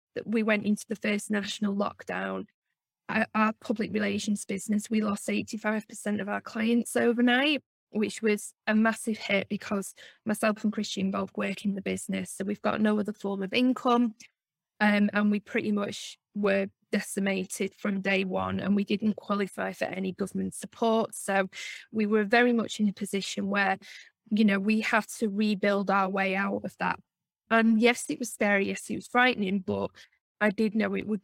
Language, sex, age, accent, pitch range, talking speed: English, female, 10-29, British, 200-220 Hz, 180 wpm